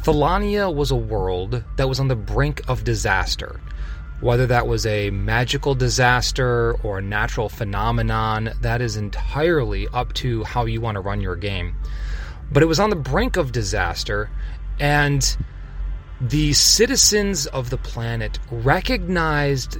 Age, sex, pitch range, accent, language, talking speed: 30-49, male, 105-135 Hz, American, English, 145 wpm